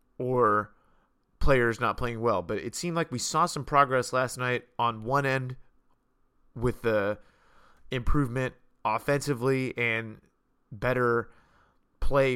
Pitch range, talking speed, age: 115-130 Hz, 120 wpm, 30-49